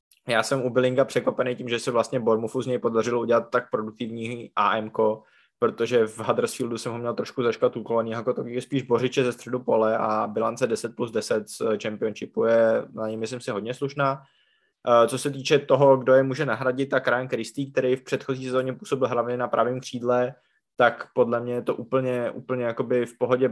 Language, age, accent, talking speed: Czech, 20-39, native, 195 wpm